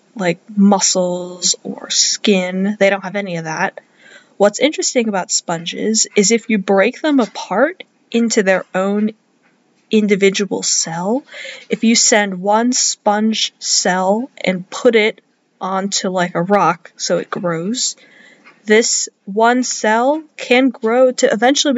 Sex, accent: female, American